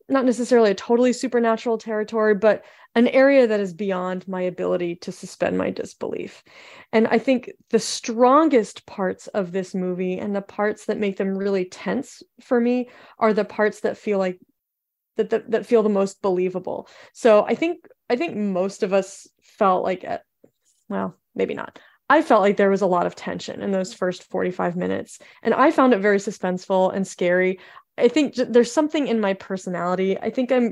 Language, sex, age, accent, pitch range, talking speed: English, female, 30-49, American, 190-235 Hz, 185 wpm